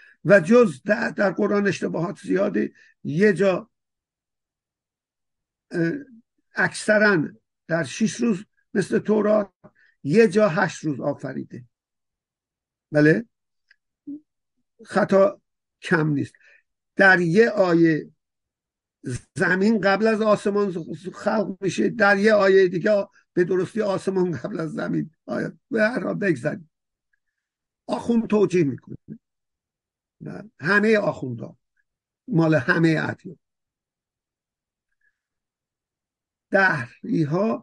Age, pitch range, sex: 50-69, 165-210 Hz, male